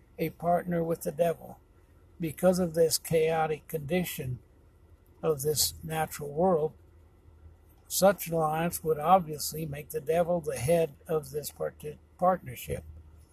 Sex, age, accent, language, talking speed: male, 60-79, American, English, 115 wpm